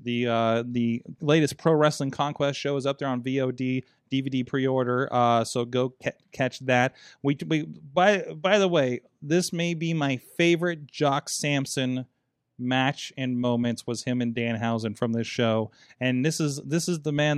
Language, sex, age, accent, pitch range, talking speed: English, male, 30-49, American, 120-145 Hz, 180 wpm